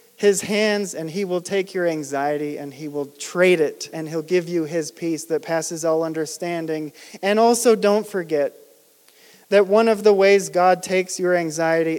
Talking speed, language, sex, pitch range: 180 wpm, English, male, 175-220 Hz